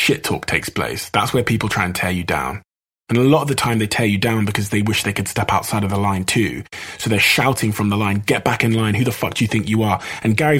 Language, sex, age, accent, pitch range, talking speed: English, male, 20-39, British, 100-135 Hz, 295 wpm